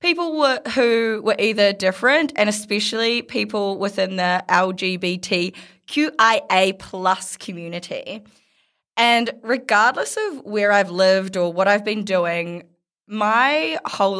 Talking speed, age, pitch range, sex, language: 110 wpm, 20-39, 180-210 Hz, female, English